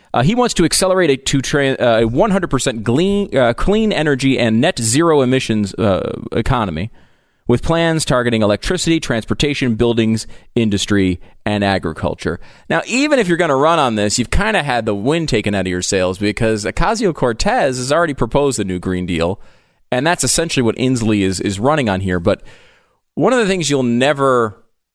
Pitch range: 105-165 Hz